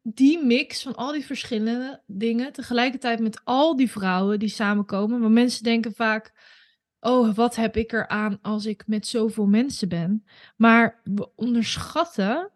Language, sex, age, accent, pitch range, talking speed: Dutch, female, 20-39, Dutch, 215-250 Hz, 155 wpm